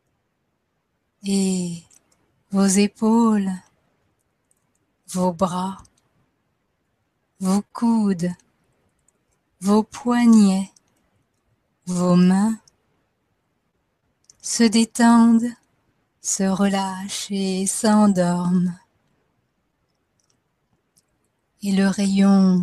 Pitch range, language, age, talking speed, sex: 185-215 Hz, French, 30-49, 55 wpm, female